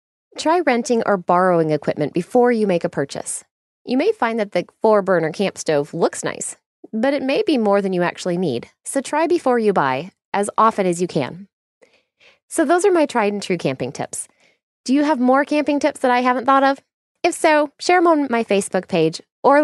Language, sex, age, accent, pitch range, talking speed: English, female, 20-39, American, 185-255 Hz, 200 wpm